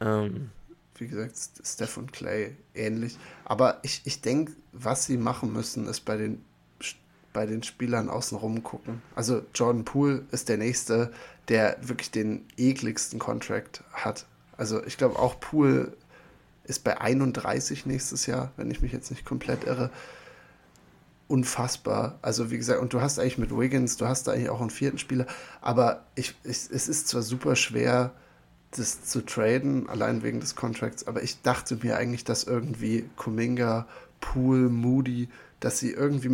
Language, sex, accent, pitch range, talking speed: German, male, German, 115-130 Hz, 160 wpm